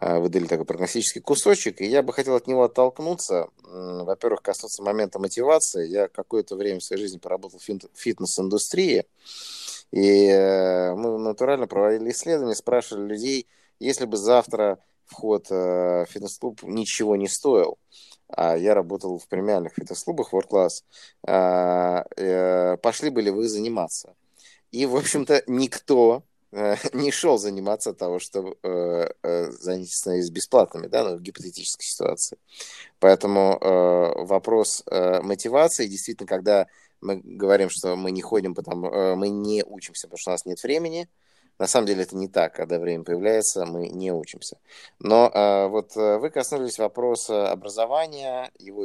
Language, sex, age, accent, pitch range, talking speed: Russian, male, 30-49, native, 95-125 Hz, 140 wpm